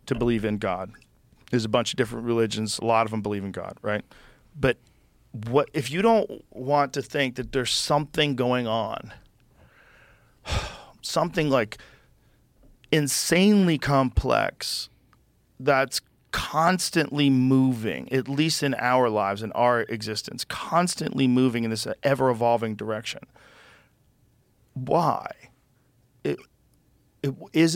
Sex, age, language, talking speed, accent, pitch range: male, 40-59, English, 120 wpm, American, 115-145 Hz